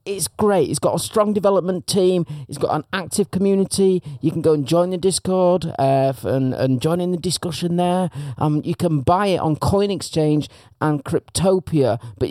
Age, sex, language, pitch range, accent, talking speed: 40-59, male, English, 120-165 Hz, British, 185 wpm